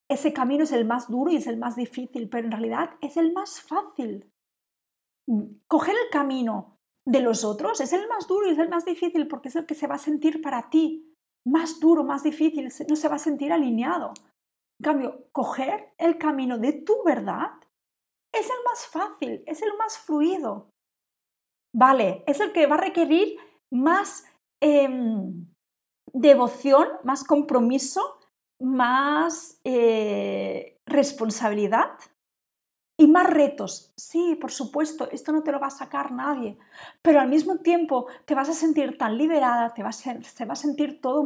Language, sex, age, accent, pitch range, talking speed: Spanish, female, 40-59, Spanish, 255-320 Hz, 165 wpm